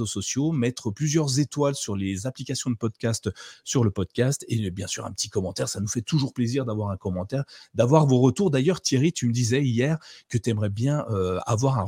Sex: male